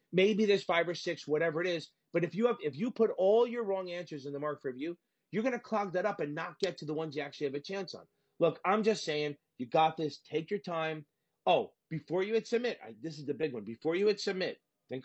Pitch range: 140-175 Hz